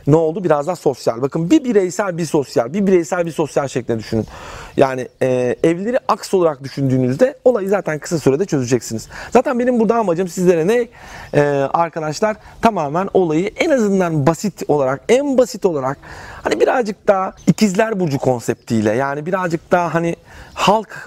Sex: male